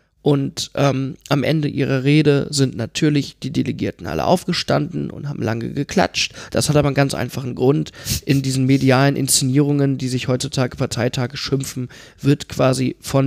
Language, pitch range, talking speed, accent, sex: German, 115-140 Hz, 160 wpm, German, male